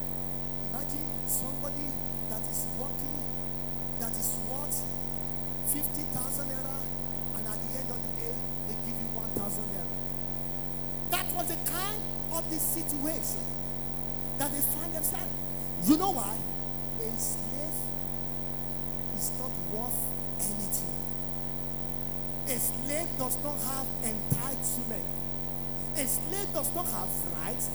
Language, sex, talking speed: English, male, 115 wpm